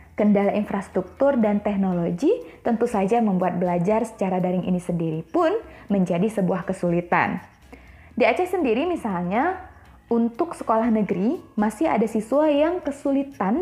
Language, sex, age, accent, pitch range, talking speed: Indonesian, female, 20-39, native, 185-235 Hz, 125 wpm